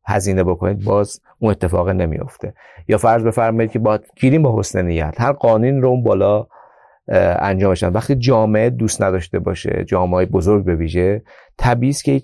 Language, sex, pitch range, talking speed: Persian, male, 95-120 Hz, 160 wpm